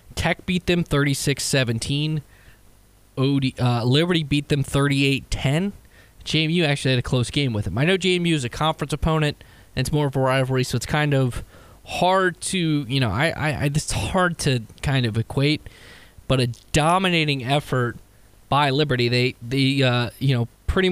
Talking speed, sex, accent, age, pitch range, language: 180 wpm, male, American, 20-39, 120-150 Hz, English